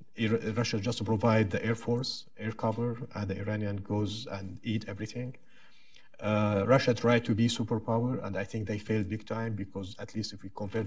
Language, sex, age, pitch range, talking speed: English, male, 50-69, 105-120 Hz, 195 wpm